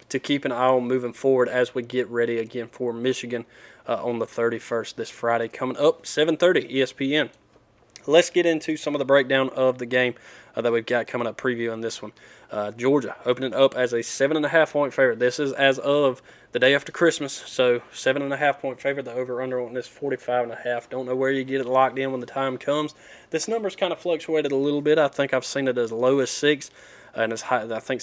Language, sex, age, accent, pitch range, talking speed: English, male, 20-39, American, 120-140 Hz, 225 wpm